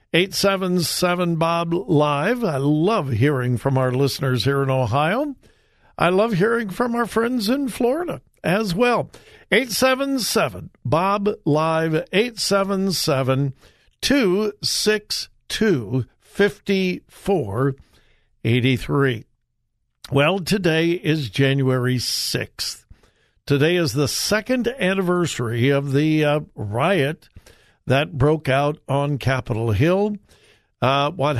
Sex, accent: male, American